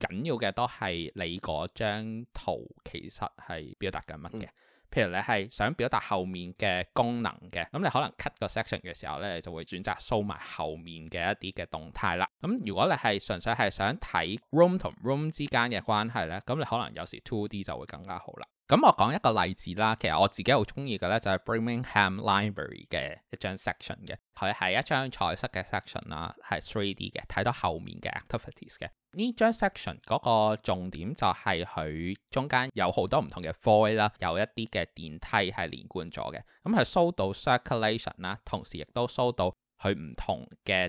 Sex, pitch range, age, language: male, 90-125 Hz, 20-39, Chinese